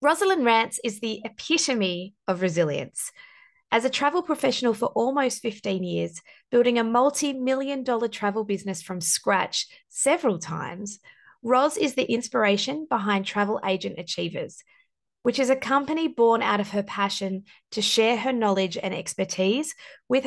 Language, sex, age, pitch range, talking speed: English, female, 20-39, 195-265 Hz, 145 wpm